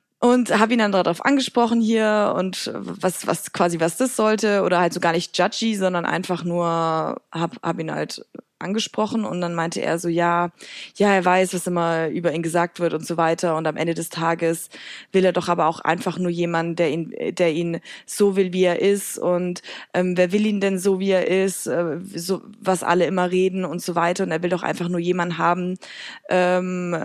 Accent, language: German, German